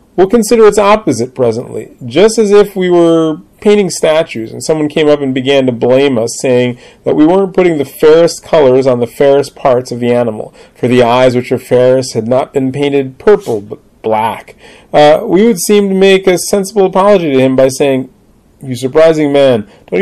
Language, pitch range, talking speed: English, 135-180 Hz, 200 wpm